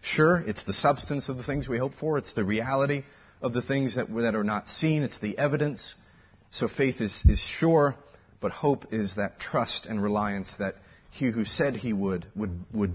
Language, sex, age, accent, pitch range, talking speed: English, male, 40-59, American, 95-125 Hz, 210 wpm